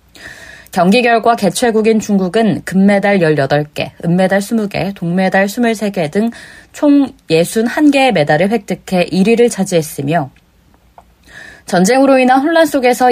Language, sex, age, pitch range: Korean, female, 20-39, 170-235 Hz